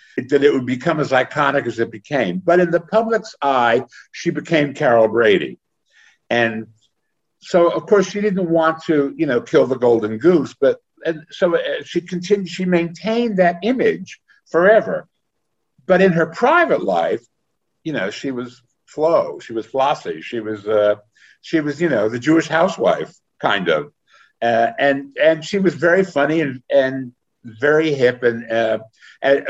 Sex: male